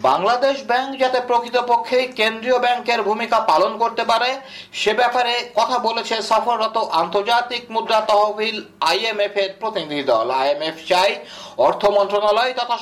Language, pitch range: Bengali, 205-235 Hz